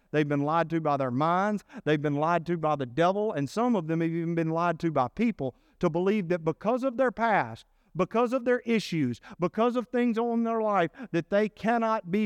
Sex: male